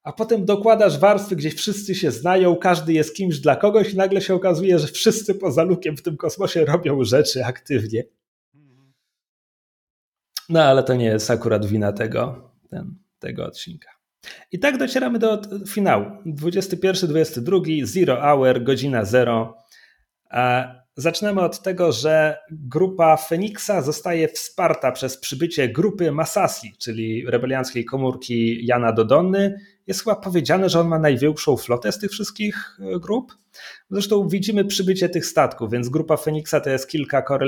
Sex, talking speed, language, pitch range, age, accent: male, 140 wpm, Polish, 130-185 Hz, 30-49, native